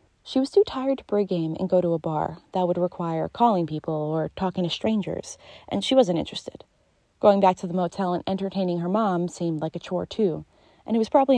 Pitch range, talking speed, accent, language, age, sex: 175-225 Hz, 230 wpm, American, English, 30-49, female